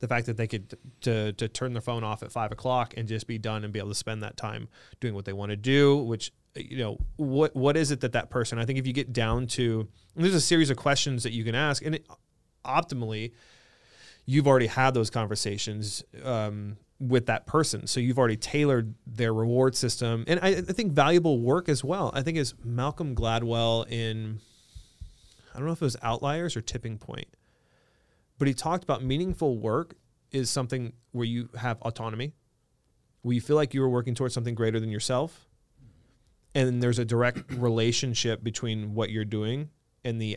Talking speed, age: 205 wpm, 30-49